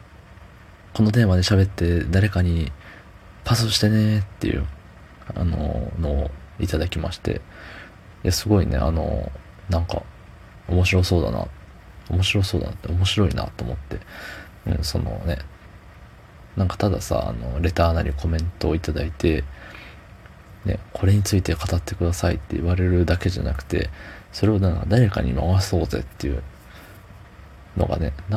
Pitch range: 80-100 Hz